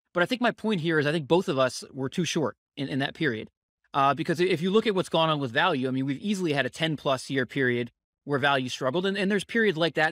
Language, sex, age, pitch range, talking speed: English, male, 20-39, 130-165 Hz, 290 wpm